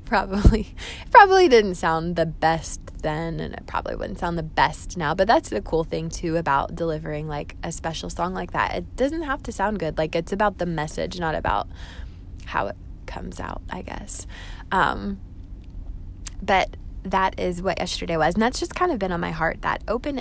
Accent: American